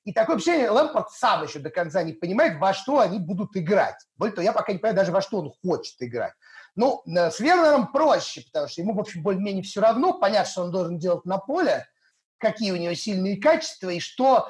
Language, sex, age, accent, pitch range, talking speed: Russian, male, 30-49, native, 175-235 Hz, 225 wpm